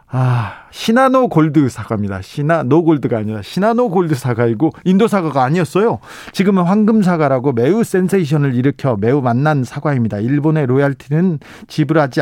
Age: 40-59